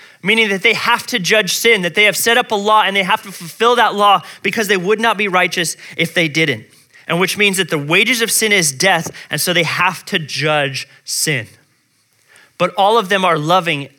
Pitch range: 150-205 Hz